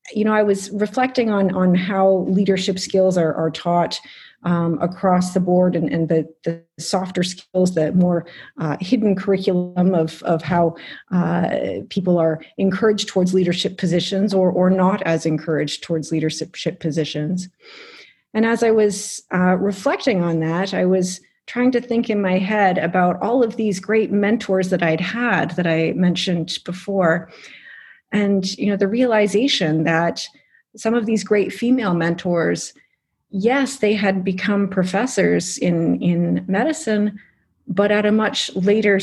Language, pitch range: English, 170-210 Hz